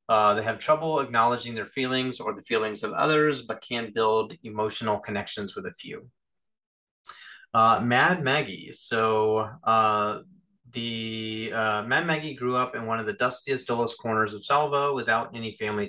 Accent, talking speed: American, 160 wpm